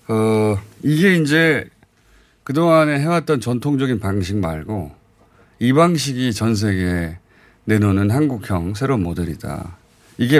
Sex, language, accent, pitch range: male, Korean, native, 100-135 Hz